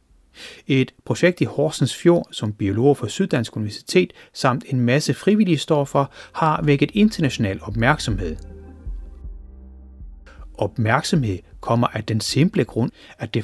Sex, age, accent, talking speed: male, 30-49, native, 125 wpm